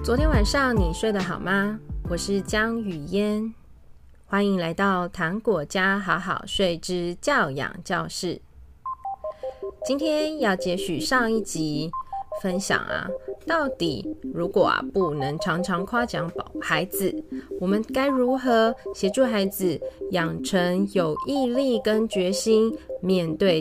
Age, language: 20-39, Chinese